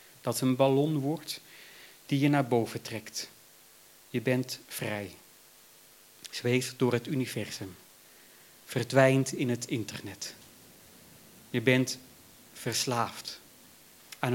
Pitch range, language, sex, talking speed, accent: 120-150 Hz, Dutch, male, 100 wpm, Dutch